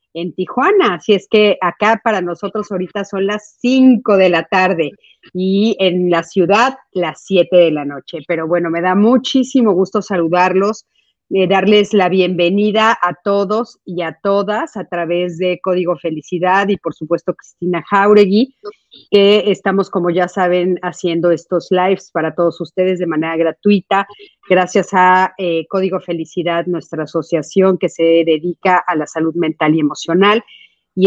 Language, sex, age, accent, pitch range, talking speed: Spanish, female, 40-59, Mexican, 170-200 Hz, 155 wpm